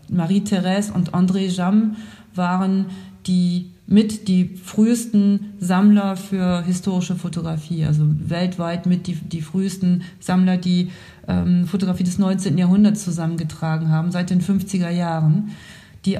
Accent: German